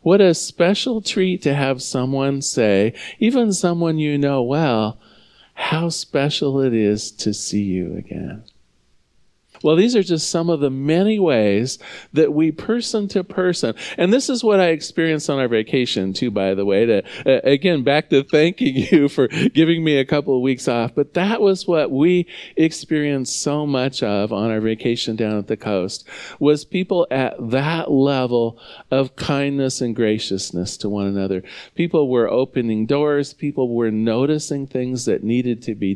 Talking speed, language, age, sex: 170 wpm, English, 40-59, male